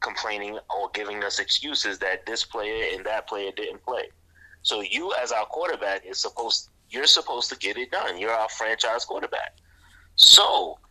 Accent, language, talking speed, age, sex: American, English, 170 wpm, 30-49, male